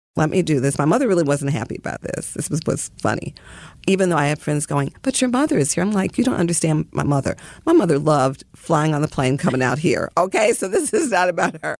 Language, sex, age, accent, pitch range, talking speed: English, female, 40-59, American, 145-180 Hz, 255 wpm